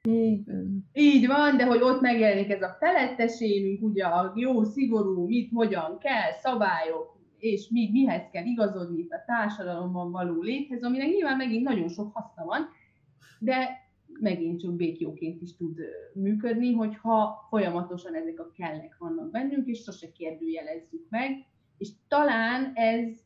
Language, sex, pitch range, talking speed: Hungarian, female, 180-235 Hz, 145 wpm